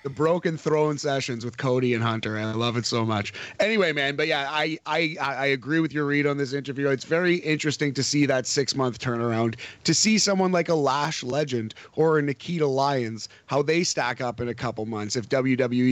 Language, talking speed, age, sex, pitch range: English, 210 wpm, 30-49, male, 125-170 Hz